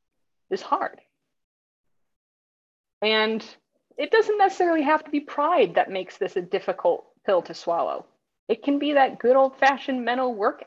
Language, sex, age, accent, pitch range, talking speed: English, female, 30-49, American, 190-265 Hz, 150 wpm